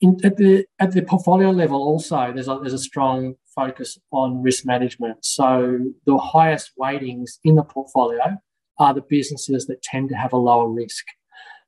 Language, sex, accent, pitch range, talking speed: English, male, Australian, 125-150 Hz, 175 wpm